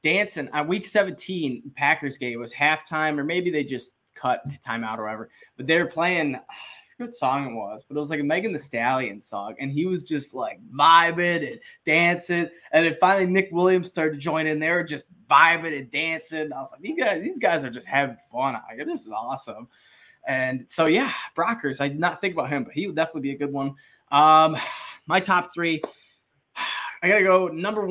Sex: male